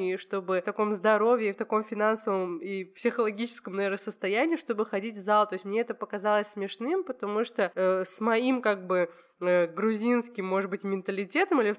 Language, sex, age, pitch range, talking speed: Russian, female, 20-39, 200-245 Hz, 180 wpm